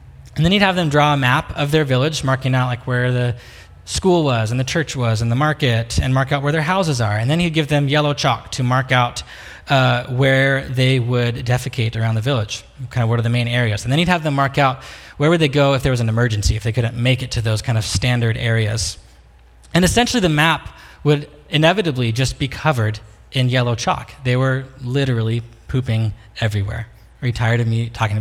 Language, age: English, 20-39